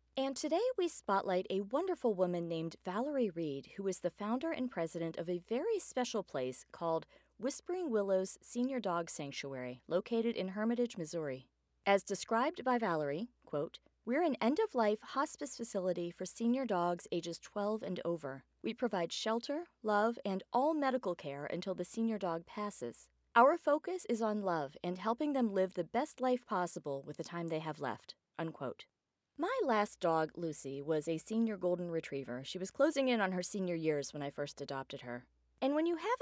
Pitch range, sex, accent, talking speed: 165-235 Hz, female, American, 175 wpm